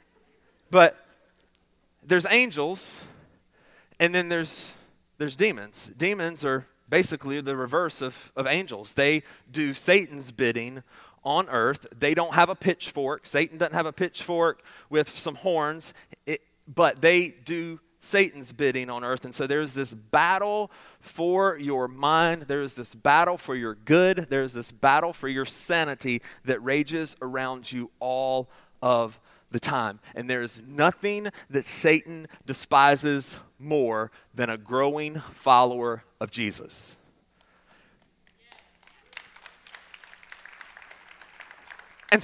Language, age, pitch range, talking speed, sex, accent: English, 30-49, 130-175 Hz, 120 wpm, male, American